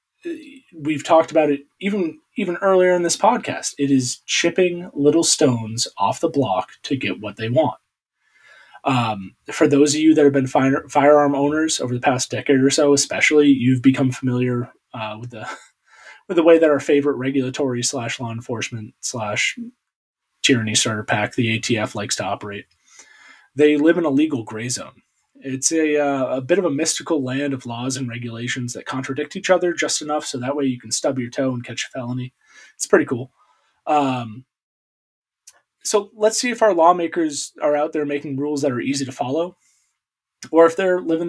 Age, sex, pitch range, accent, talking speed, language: 30-49, male, 125-160 Hz, American, 185 wpm, English